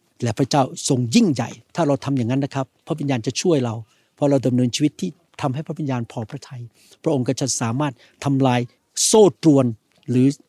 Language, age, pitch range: Thai, 60-79, 130-165 Hz